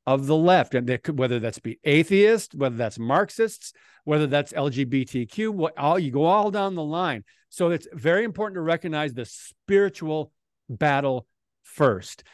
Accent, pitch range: American, 140-190 Hz